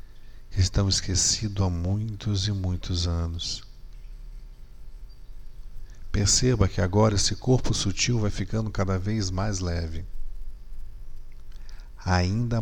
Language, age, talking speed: Portuguese, 50-69, 100 wpm